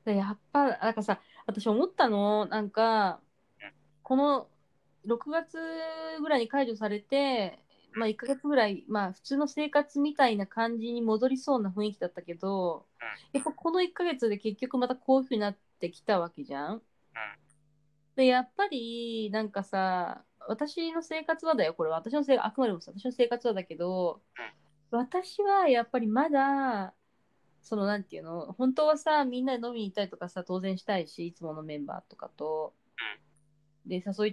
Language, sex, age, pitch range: Japanese, female, 20-39, 185-270 Hz